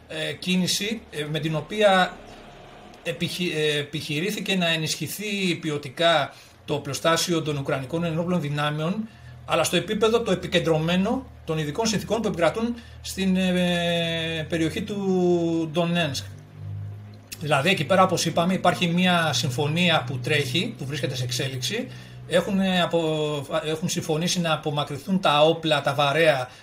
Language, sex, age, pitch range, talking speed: Greek, male, 40-59, 145-175 Hz, 120 wpm